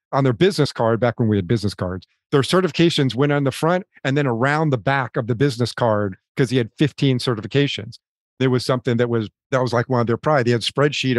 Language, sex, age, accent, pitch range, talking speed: English, male, 50-69, American, 120-145 Hz, 245 wpm